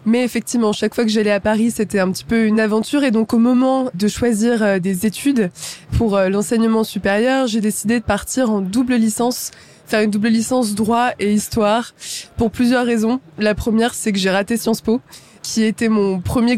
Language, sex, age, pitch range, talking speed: French, female, 20-39, 205-235 Hz, 195 wpm